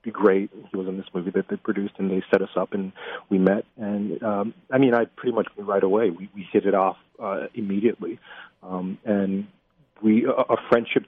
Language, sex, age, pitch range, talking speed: English, male, 40-59, 95-110 Hz, 220 wpm